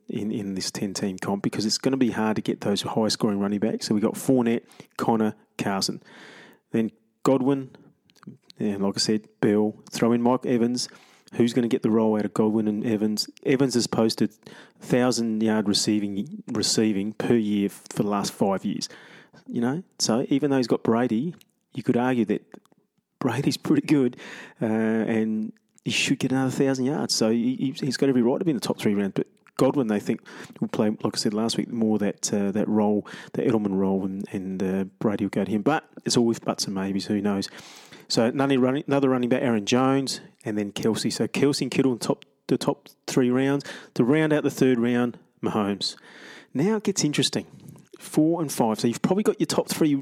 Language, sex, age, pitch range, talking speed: English, male, 30-49, 105-135 Hz, 205 wpm